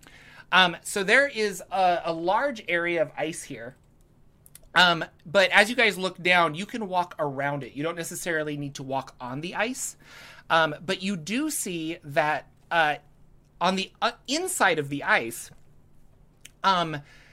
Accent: American